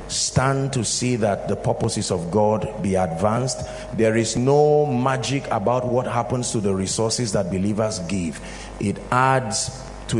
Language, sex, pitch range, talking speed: English, male, 100-125 Hz, 155 wpm